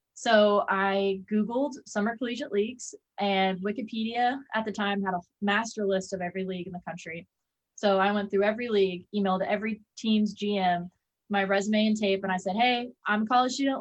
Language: English